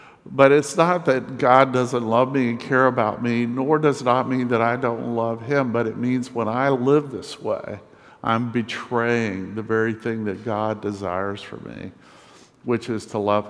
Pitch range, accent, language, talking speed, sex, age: 110-130 Hz, American, English, 195 wpm, male, 50-69